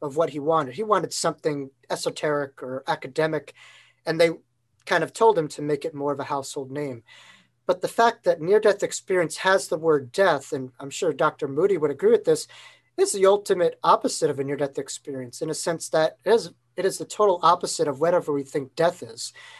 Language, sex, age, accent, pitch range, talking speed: English, male, 40-59, American, 140-180 Hz, 210 wpm